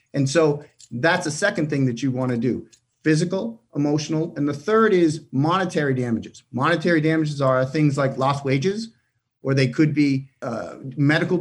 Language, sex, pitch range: English, male, 135-170 Hz